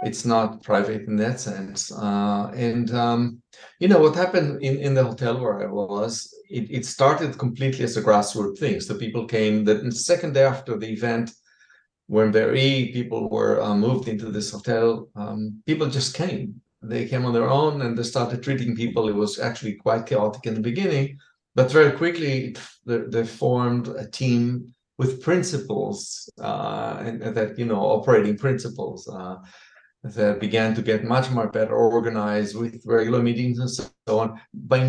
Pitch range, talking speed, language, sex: 105-130 Hz, 175 wpm, English, male